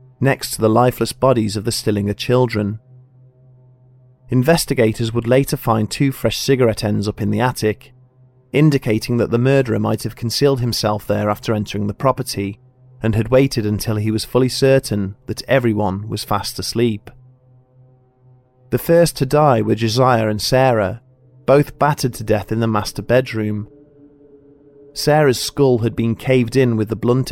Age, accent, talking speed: 30-49, British, 160 wpm